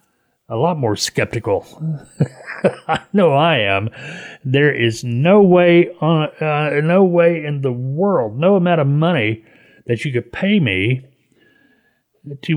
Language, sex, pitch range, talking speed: English, male, 120-155 Hz, 140 wpm